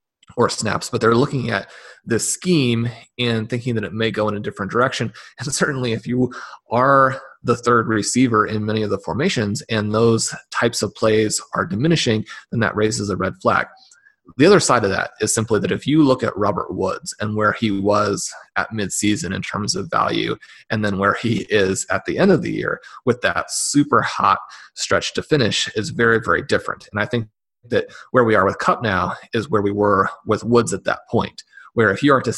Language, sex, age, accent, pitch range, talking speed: English, male, 30-49, American, 105-125 Hz, 210 wpm